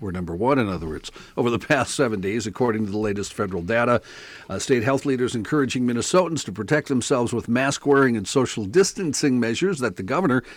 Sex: male